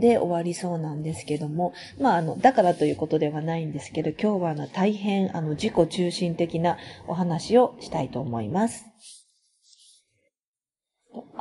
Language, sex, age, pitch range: Japanese, female, 40-59, 155-215 Hz